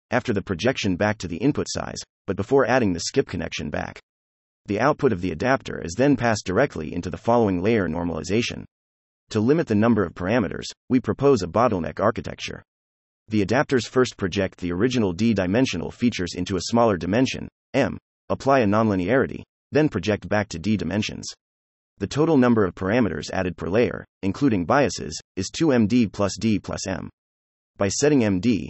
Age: 30-49